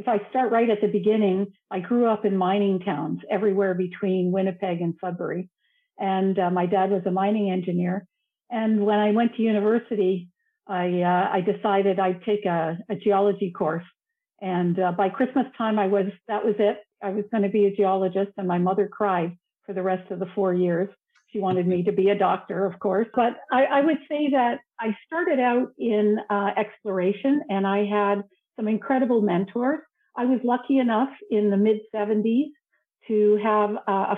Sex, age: female, 50-69